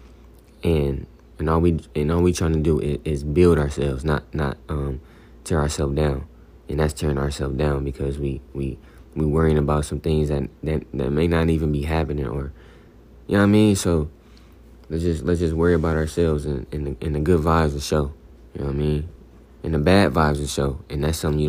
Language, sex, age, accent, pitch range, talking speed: English, male, 20-39, American, 70-80 Hz, 220 wpm